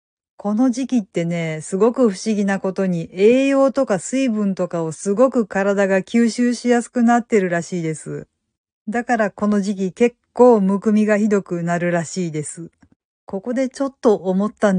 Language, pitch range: Japanese, 190-240 Hz